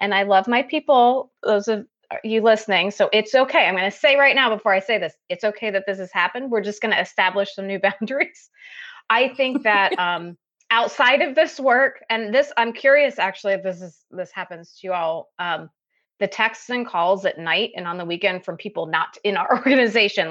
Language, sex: English, female